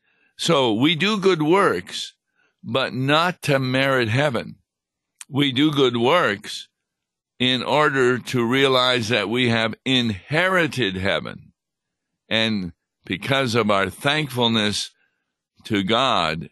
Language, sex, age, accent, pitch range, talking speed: English, male, 60-79, American, 110-140 Hz, 110 wpm